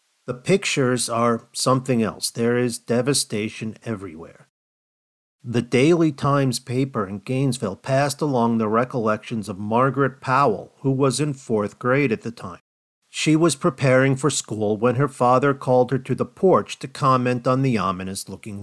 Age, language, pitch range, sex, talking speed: 50-69, English, 110-135 Hz, male, 155 wpm